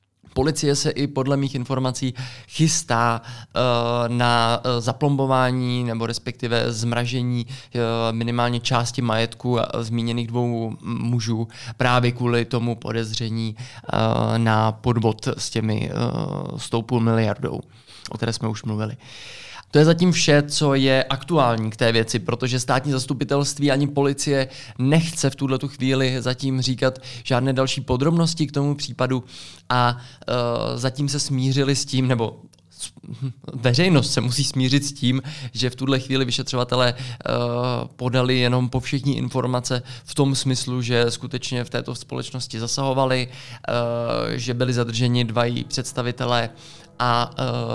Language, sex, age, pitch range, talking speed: Czech, male, 20-39, 120-135 Hz, 130 wpm